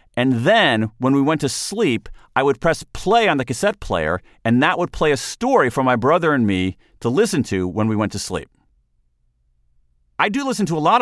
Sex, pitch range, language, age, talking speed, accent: male, 100-130 Hz, English, 40-59, 220 wpm, American